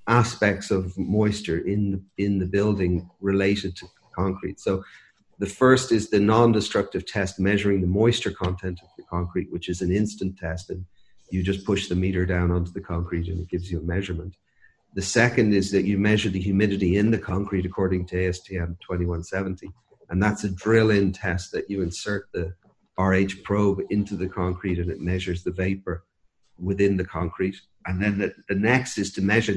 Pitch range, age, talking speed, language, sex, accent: 95-105 Hz, 40-59, 185 wpm, English, male, Irish